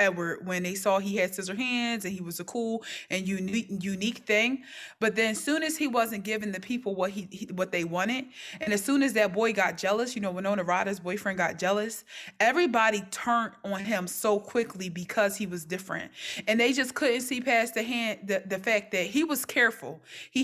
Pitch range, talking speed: 190-240 Hz, 215 wpm